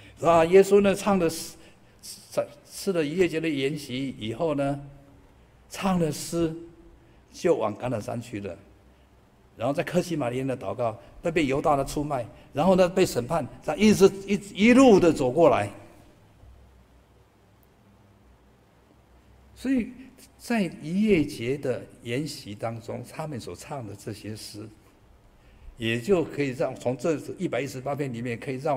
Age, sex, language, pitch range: 60-79, male, Chinese, 100-145 Hz